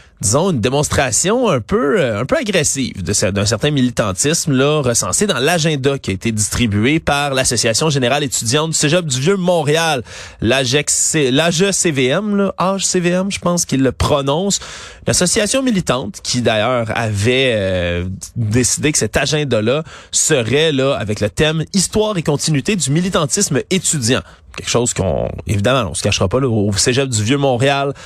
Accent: Canadian